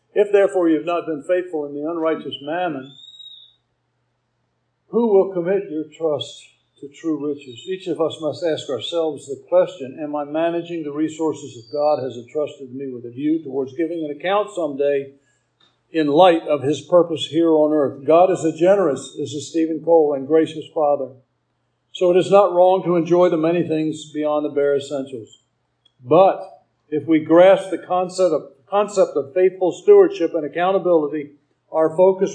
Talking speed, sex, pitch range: 175 wpm, male, 135-165 Hz